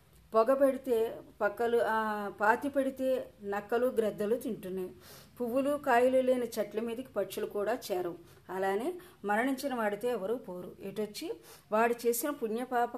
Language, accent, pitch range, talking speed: Telugu, native, 195-235 Hz, 125 wpm